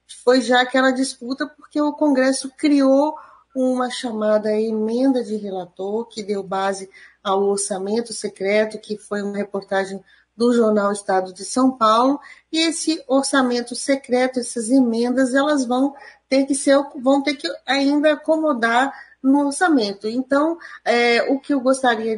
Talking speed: 145 wpm